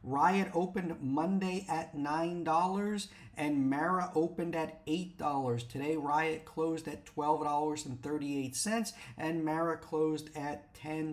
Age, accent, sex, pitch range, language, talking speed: 50-69, American, male, 135-165 Hz, English, 110 wpm